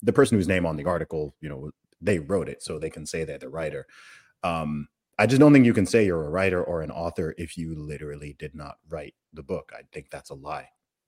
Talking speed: 250 wpm